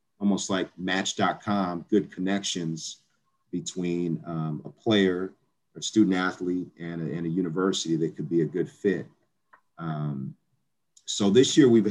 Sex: male